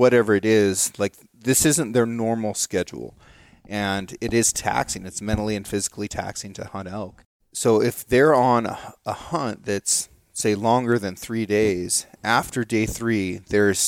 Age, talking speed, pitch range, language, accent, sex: 30-49, 160 wpm, 100-120 Hz, English, American, male